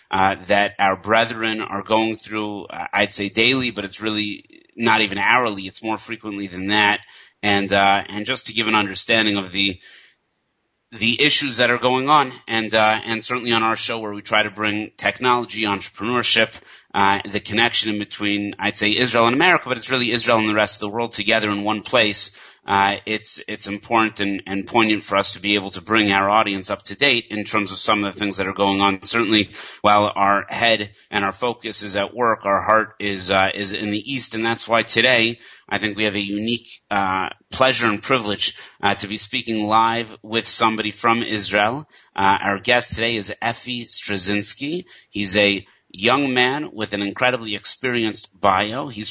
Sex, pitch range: male, 100-115 Hz